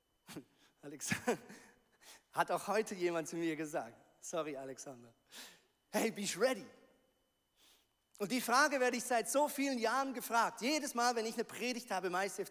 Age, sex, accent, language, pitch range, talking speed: 40-59, male, German, German, 225-280 Hz, 160 wpm